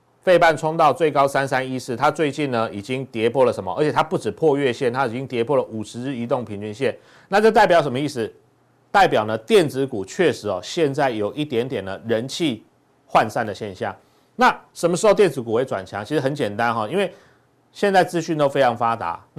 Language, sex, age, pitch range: Chinese, male, 30-49, 115-160 Hz